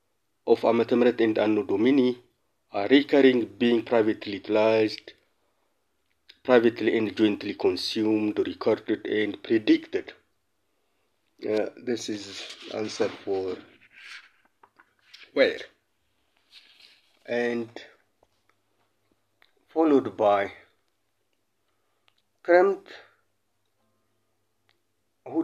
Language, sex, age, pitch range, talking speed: English, male, 50-69, 110-150 Hz, 65 wpm